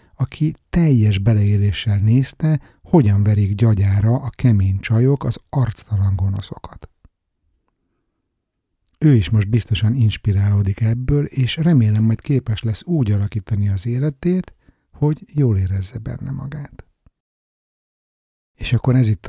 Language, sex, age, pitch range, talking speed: Hungarian, male, 60-79, 105-130 Hz, 115 wpm